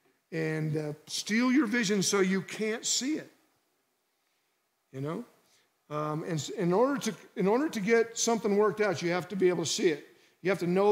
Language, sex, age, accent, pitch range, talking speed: English, male, 50-69, American, 180-230 Hz, 200 wpm